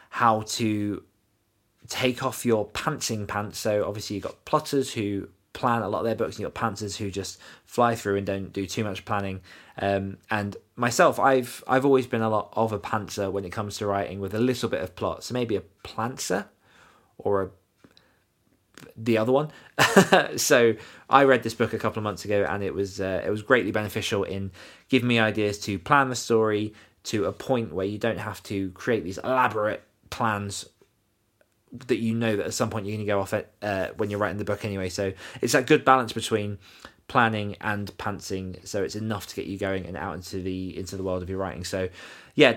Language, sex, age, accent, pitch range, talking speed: English, male, 20-39, British, 100-120 Hz, 210 wpm